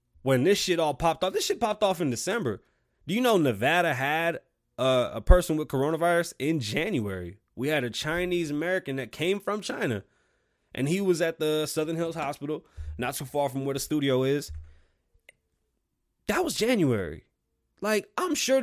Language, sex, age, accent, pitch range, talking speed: English, male, 20-39, American, 120-190 Hz, 175 wpm